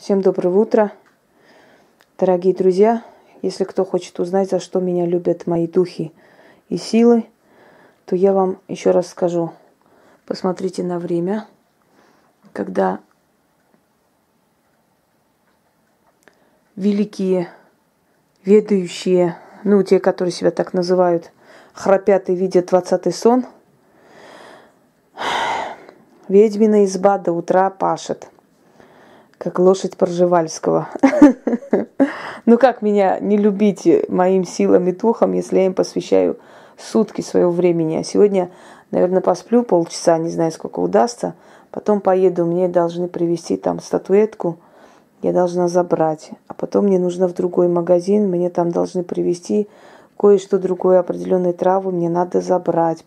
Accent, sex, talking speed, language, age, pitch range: native, female, 115 wpm, Russian, 20-39, 175-205 Hz